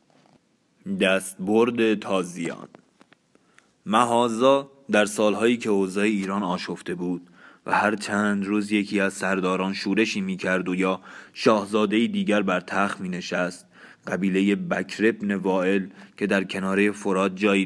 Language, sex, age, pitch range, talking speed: Persian, male, 20-39, 95-105 Hz, 120 wpm